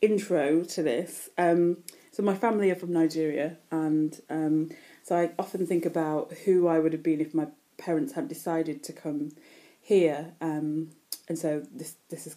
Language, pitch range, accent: English, 160-190 Hz, British